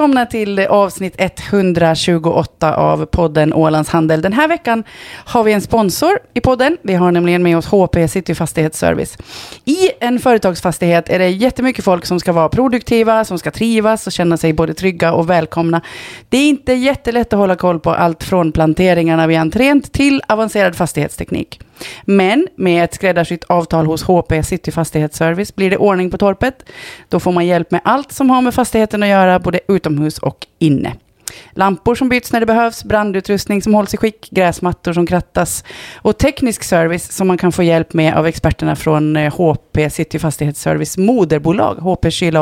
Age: 30-49